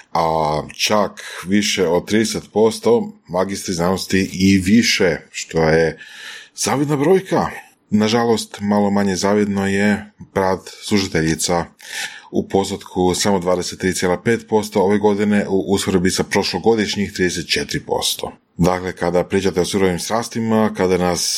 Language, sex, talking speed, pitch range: Croatian, male, 105 wpm, 90-110 Hz